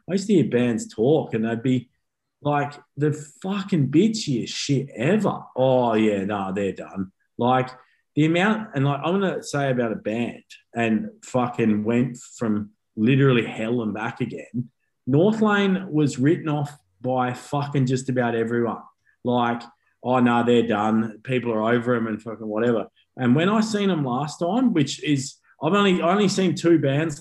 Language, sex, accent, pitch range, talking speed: English, male, Australian, 120-155 Hz, 170 wpm